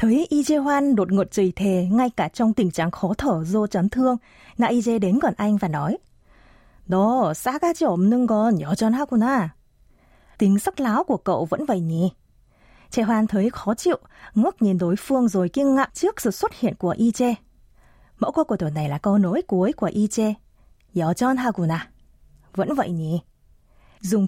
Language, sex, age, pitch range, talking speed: Vietnamese, female, 20-39, 185-250 Hz, 185 wpm